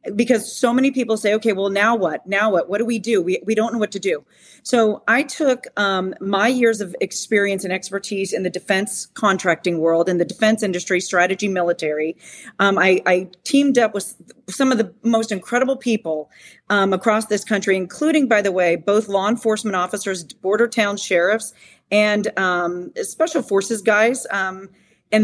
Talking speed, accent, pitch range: 185 wpm, American, 195-235 Hz